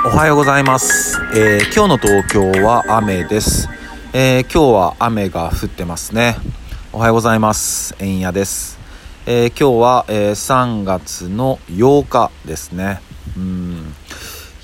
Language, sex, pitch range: Japanese, male, 85-110 Hz